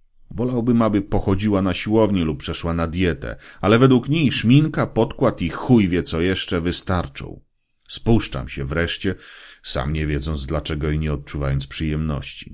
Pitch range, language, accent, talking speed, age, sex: 75-100 Hz, Polish, native, 150 wpm, 30-49, male